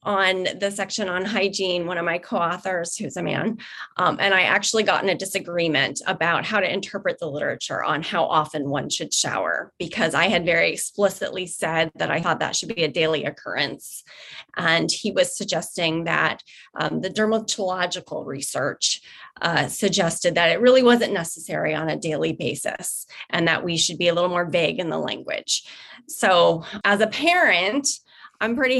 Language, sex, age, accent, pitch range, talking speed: English, female, 30-49, American, 175-230 Hz, 175 wpm